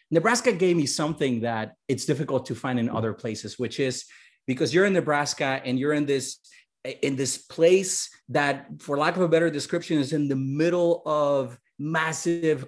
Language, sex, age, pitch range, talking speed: English, male, 30-49, 120-150 Hz, 175 wpm